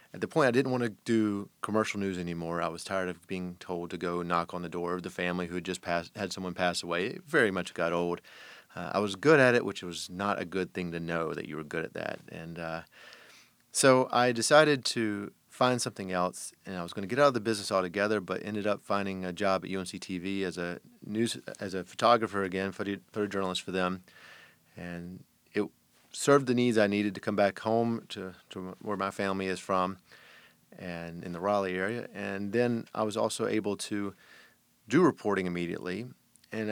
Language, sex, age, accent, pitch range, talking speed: English, male, 30-49, American, 90-105 Hz, 215 wpm